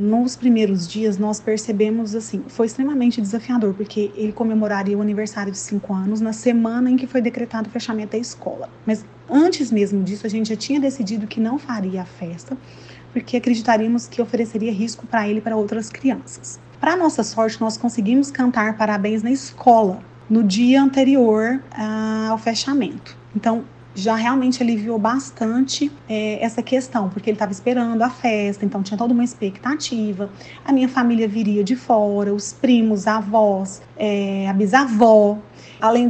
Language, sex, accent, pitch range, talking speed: Portuguese, female, Brazilian, 215-255 Hz, 160 wpm